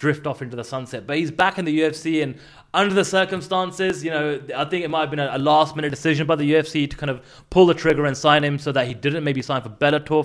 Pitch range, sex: 130-155 Hz, male